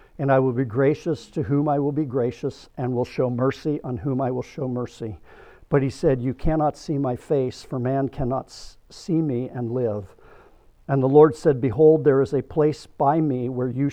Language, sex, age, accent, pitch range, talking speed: English, male, 50-69, American, 130-150 Hz, 210 wpm